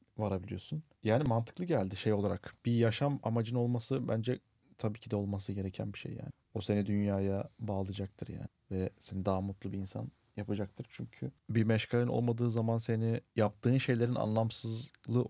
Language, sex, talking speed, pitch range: Turkish, male, 155 wpm, 105-120 Hz